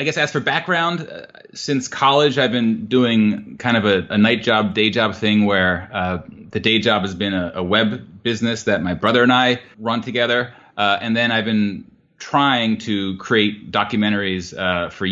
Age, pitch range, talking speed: 30-49, 95-115 Hz, 195 wpm